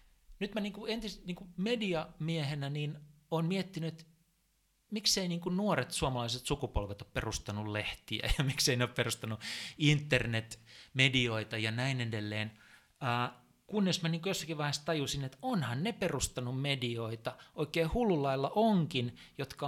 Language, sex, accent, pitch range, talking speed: Finnish, male, native, 115-170 Hz, 125 wpm